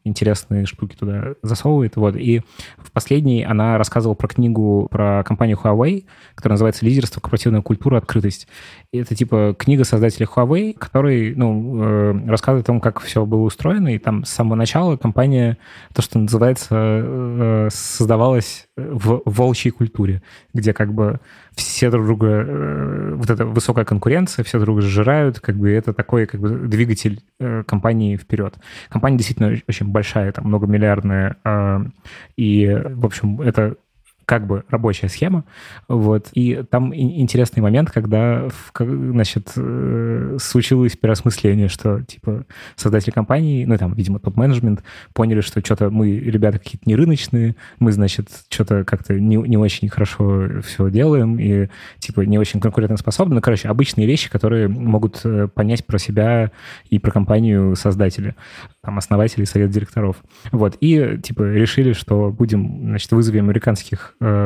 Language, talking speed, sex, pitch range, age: Russian, 140 wpm, male, 105-120 Hz, 20-39